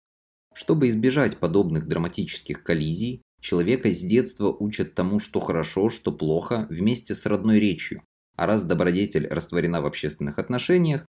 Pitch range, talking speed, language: 90-110 Hz, 135 wpm, Russian